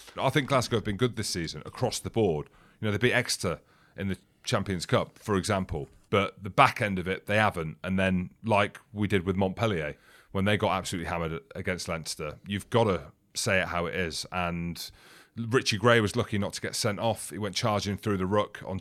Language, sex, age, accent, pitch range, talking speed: English, male, 30-49, British, 95-110 Hz, 220 wpm